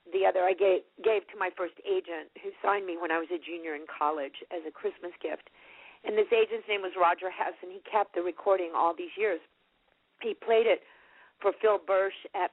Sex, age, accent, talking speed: female, 50-69, American, 215 wpm